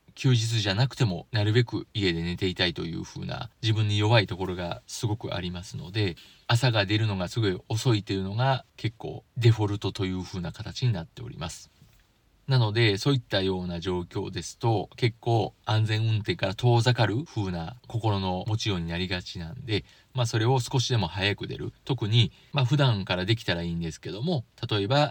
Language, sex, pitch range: Japanese, male, 95-125 Hz